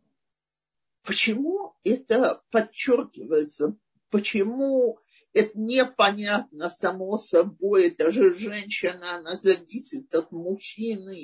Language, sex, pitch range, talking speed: Russian, male, 205-285 Hz, 80 wpm